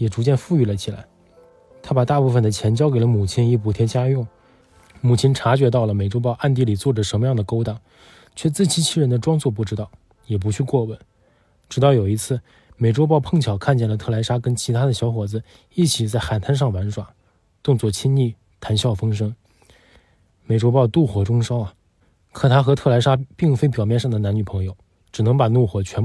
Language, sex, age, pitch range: Chinese, male, 20-39, 105-130 Hz